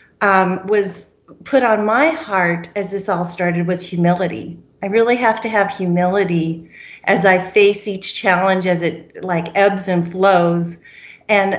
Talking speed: 155 wpm